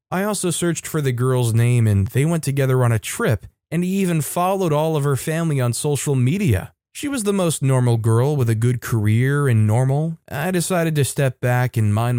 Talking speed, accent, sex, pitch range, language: 215 wpm, American, male, 115-150 Hz, English